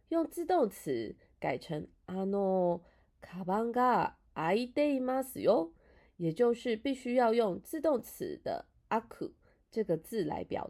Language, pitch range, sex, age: Japanese, 175-280 Hz, female, 30-49